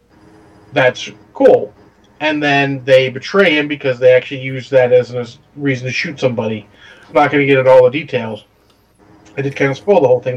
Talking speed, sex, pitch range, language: 205 wpm, male, 110-155 Hz, English